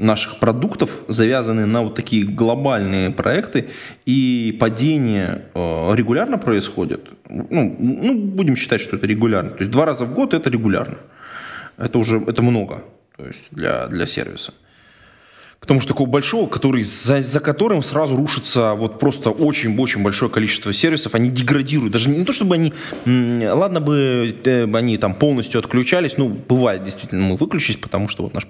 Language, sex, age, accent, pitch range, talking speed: Russian, male, 20-39, native, 110-145 Hz, 155 wpm